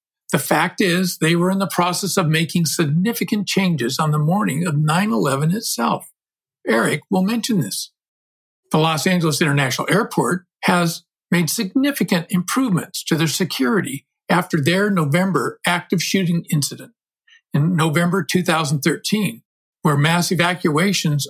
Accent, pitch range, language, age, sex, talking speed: American, 155-195 Hz, English, 60-79, male, 130 wpm